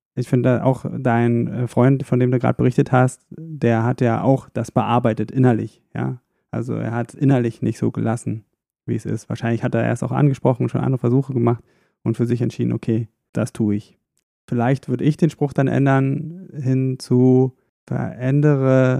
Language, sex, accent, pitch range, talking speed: German, male, German, 115-135 Hz, 185 wpm